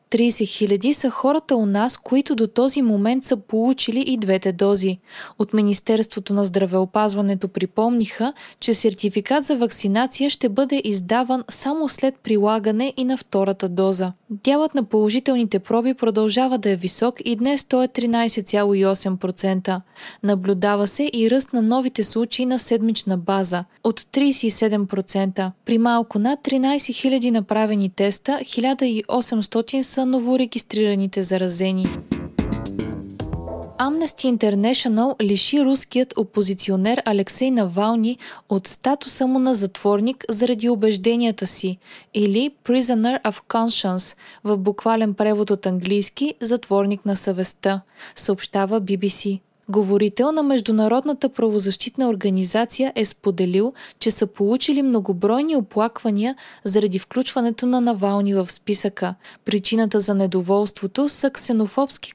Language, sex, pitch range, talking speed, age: Bulgarian, female, 200-255 Hz, 120 wpm, 20-39